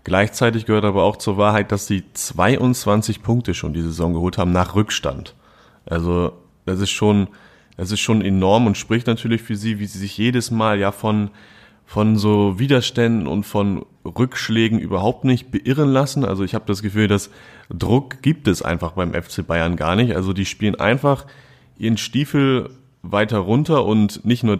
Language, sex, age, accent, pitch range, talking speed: German, male, 30-49, German, 100-125 Hz, 180 wpm